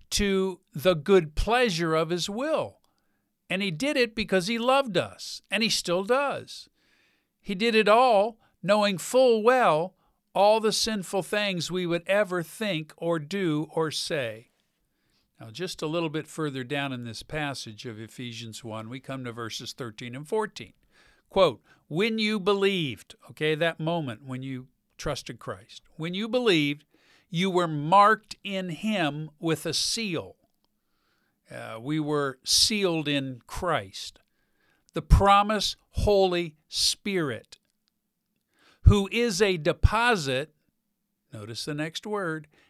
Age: 50-69